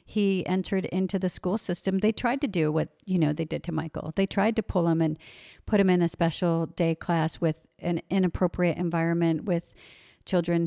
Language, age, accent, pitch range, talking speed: English, 50-69, American, 170-190 Hz, 200 wpm